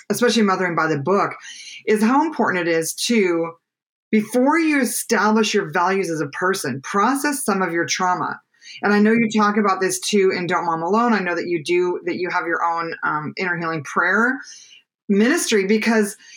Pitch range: 185-230 Hz